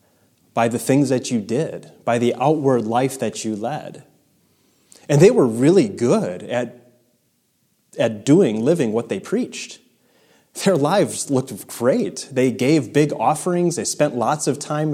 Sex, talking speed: male, 155 wpm